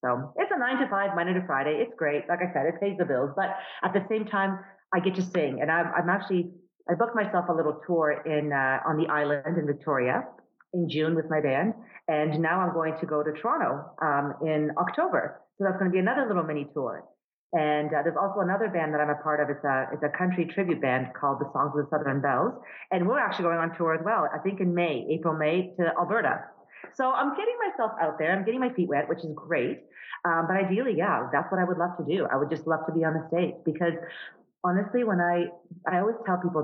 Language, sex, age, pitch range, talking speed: English, female, 40-59, 150-185 Hz, 250 wpm